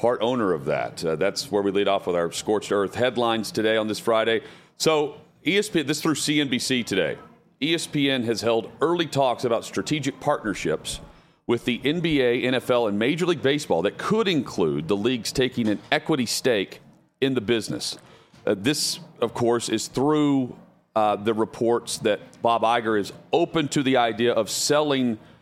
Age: 40-59